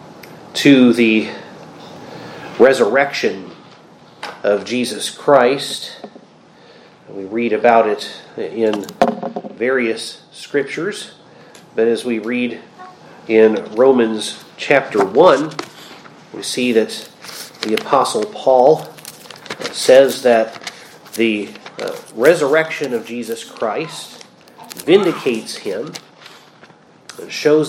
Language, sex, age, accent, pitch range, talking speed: English, male, 40-59, American, 115-140 Hz, 80 wpm